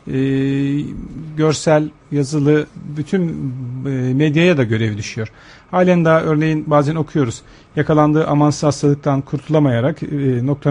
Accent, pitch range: native, 130-165 Hz